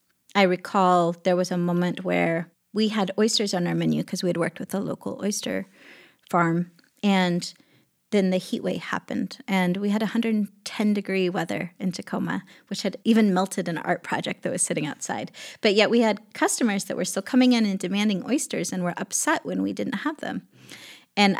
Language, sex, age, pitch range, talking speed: English, female, 30-49, 180-215 Hz, 190 wpm